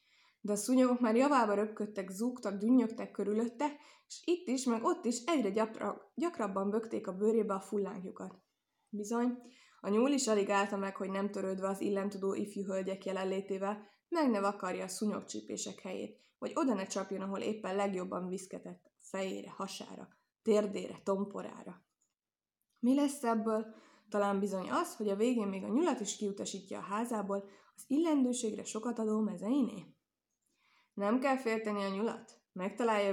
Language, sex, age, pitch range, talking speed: Hungarian, female, 20-39, 195-245 Hz, 150 wpm